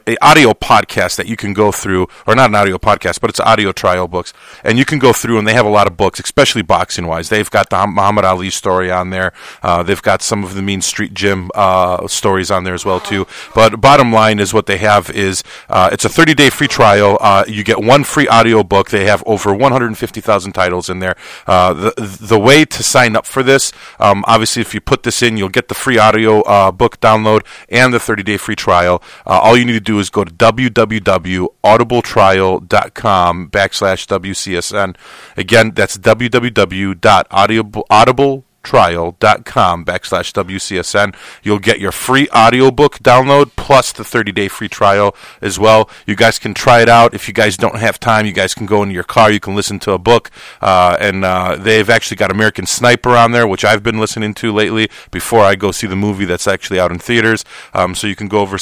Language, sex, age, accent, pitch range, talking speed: English, male, 30-49, American, 95-115 Hz, 210 wpm